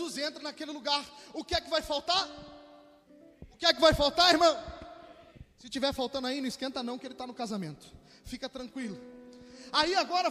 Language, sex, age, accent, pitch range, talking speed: Portuguese, male, 20-39, Brazilian, 285-325 Hz, 185 wpm